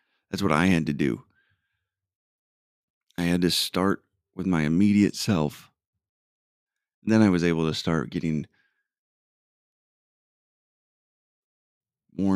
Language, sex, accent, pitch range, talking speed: English, male, American, 75-95 Hz, 110 wpm